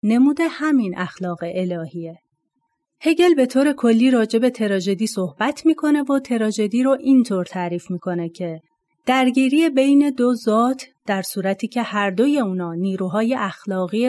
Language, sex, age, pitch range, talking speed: Persian, female, 30-49, 185-260 Hz, 130 wpm